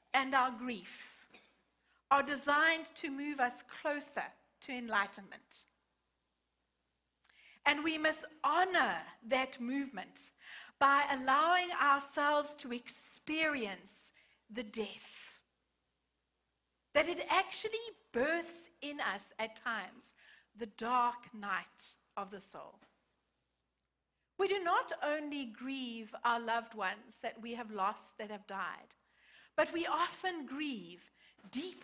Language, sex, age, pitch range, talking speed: English, female, 40-59, 230-310 Hz, 110 wpm